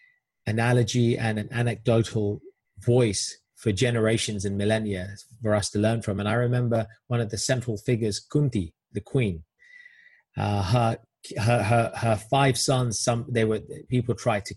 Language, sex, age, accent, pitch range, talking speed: English, male, 30-49, British, 110-145 Hz, 155 wpm